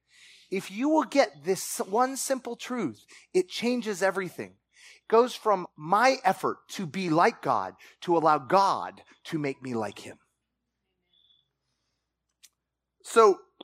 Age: 30-49